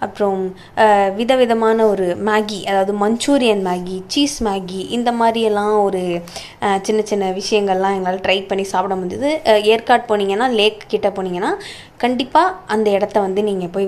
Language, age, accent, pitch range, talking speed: Tamil, 20-39, native, 195-245 Hz, 135 wpm